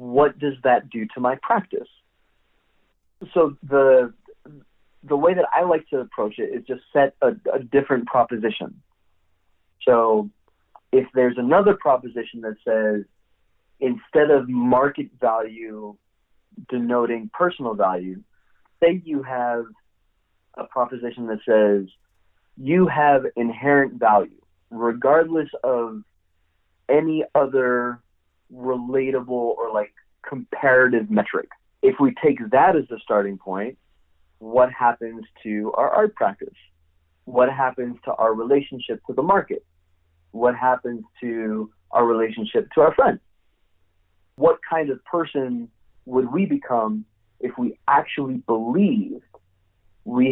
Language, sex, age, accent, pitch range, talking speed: English, male, 30-49, American, 95-130 Hz, 120 wpm